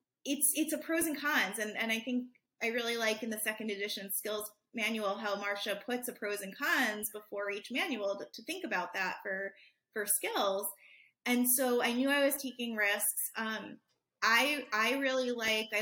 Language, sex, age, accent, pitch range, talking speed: English, female, 20-39, American, 215-265 Hz, 195 wpm